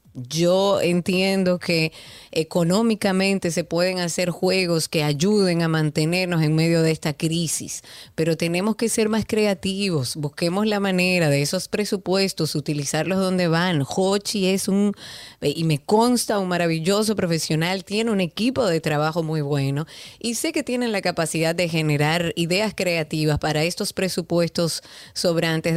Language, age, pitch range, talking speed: Spanish, 30-49, 155-195 Hz, 145 wpm